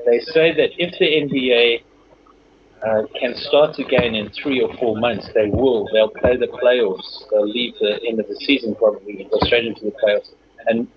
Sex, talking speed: male, 195 wpm